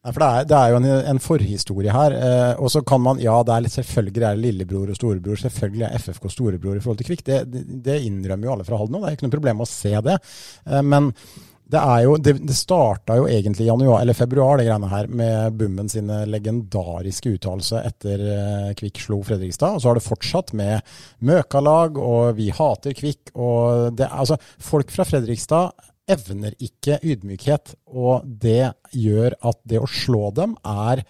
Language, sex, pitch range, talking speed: English, male, 105-135 Hz, 180 wpm